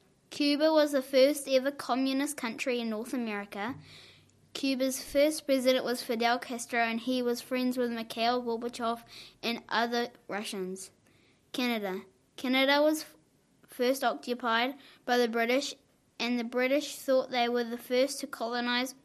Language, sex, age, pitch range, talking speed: English, female, 20-39, 225-260 Hz, 140 wpm